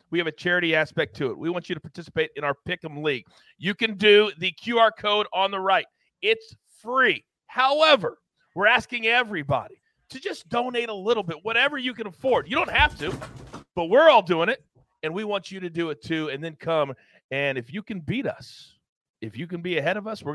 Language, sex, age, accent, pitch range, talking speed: English, male, 40-59, American, 140-200 Hz, 220 wpm